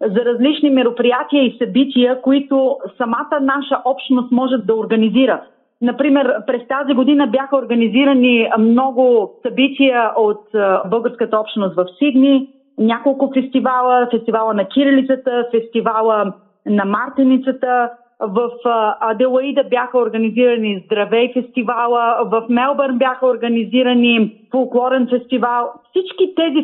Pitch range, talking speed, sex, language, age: 230-275 Hz, 105 wpm, female, Bulgarian, 30-49